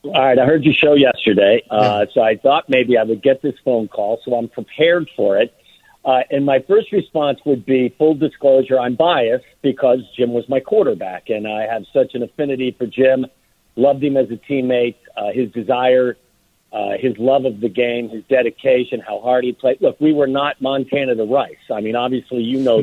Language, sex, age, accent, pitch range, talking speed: English, male, 50-69, American, 120-140 Hz, 210 wpm